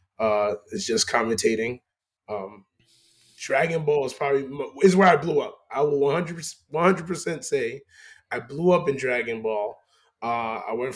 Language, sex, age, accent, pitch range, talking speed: English, male, 20-39, American, 120-190 Hz, 160 wpm